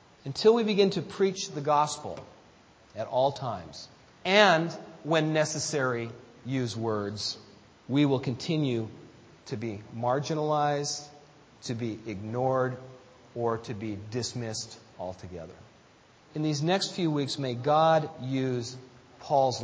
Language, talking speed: English, 115 wpm